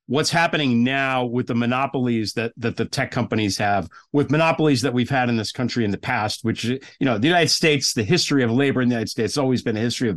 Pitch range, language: 115-155 Hz, English